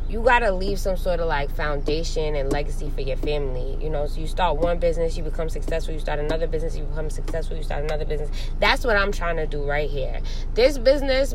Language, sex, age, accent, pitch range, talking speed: English, female, 20-39, American, 155-190 Hz, 240 wpm